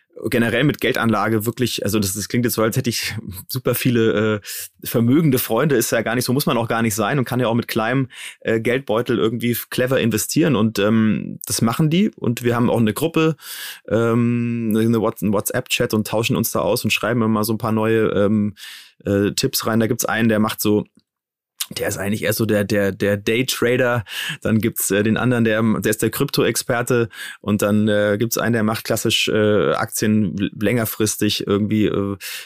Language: German